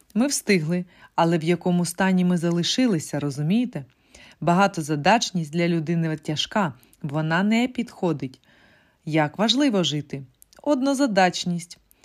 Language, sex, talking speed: Ukrainian, female, 100 wpm